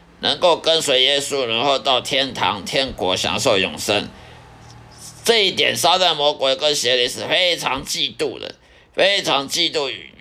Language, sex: Chinese, male